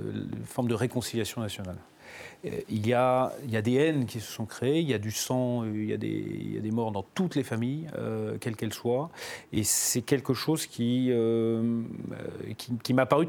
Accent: French